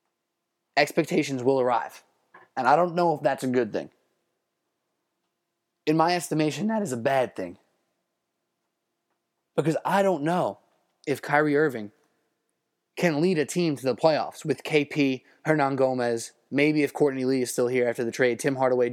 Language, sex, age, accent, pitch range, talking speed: English, male, 20-39, American, 120-165 Hz, 160 wpm